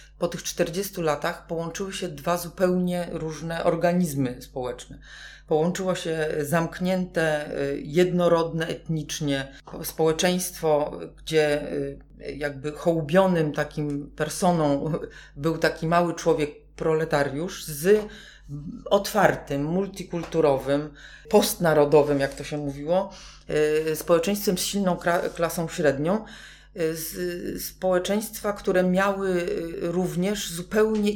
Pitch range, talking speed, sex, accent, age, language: 150-180 Hz, 90 wpm, female, native, 40-59, Polish